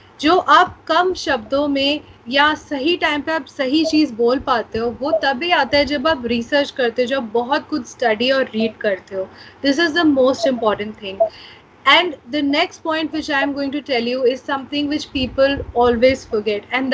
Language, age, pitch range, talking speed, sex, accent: Hindi, 30-49, 250-320 Hz, 200 wpm, female, native